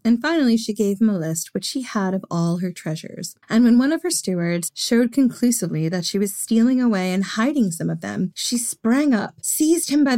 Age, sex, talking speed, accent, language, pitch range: 30-49, female, 225 wpm, American, English, 185-235 Hz